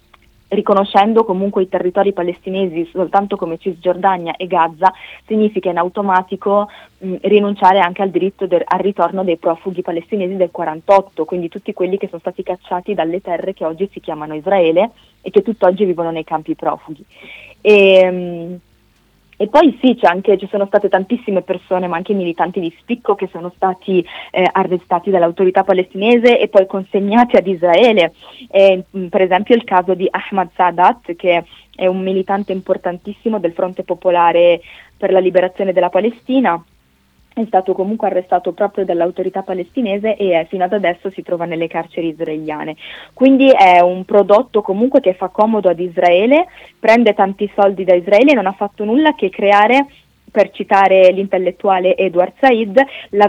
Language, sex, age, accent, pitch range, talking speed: Italian, female, 20-39, native, 175-205 Hz, 160 wpm